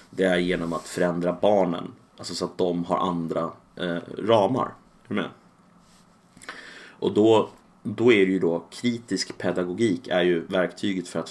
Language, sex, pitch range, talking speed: Swedish, male, 85-100 Hz, 145 wpm